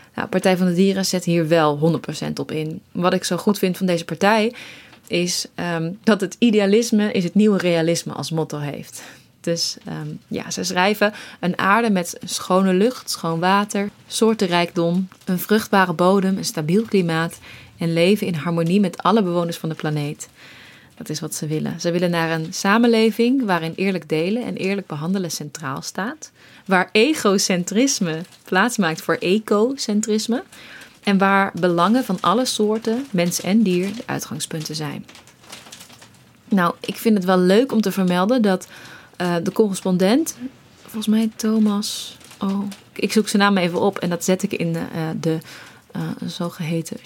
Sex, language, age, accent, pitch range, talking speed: female, Dutch, 20-39, Dutch, 170-210 Hz, 165 wpm